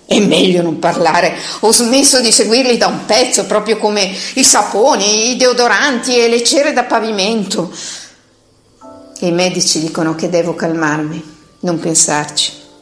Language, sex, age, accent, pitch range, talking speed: Italian, female, 50-69, native, 175-260 Hz, 140 wpm